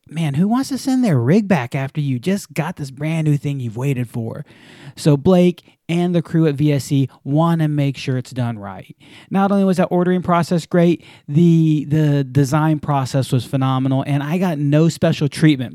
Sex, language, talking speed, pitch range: male, English, 200 wpm, 130-160 Hz